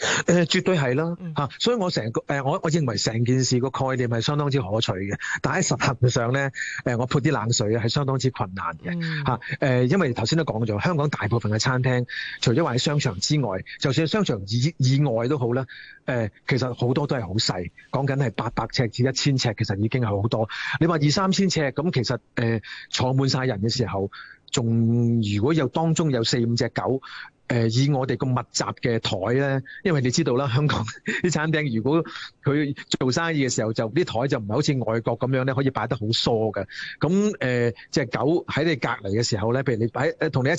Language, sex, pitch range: Chinese, male, 115-155 Hz